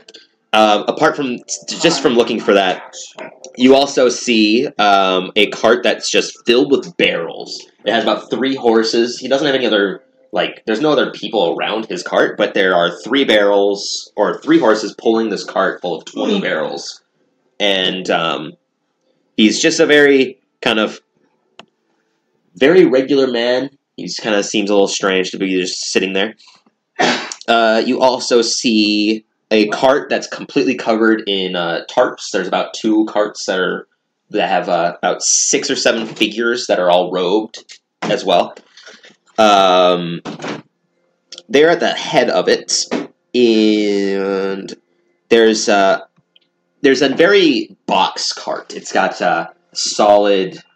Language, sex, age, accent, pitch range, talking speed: English, male, 20-39, American, 100-125 Hz, 155 wpm